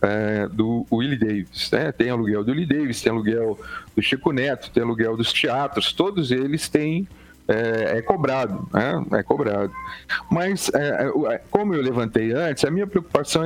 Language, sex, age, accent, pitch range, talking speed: Portuguese, male, 40-59, Brazilian, 105-155 Hz, 165 wpm